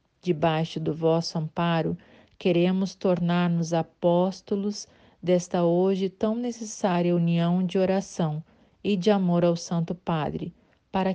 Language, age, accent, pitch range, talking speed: Portuguese, 40-59, Brazilian, 165-190 Hz, 115 wpm